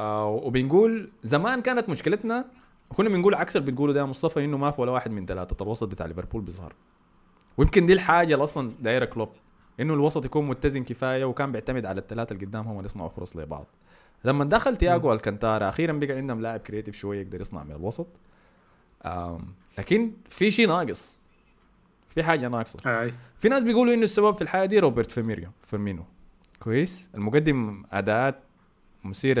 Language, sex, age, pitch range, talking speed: Arabic, male, 20-39, 100-155 Hz, 165 wpm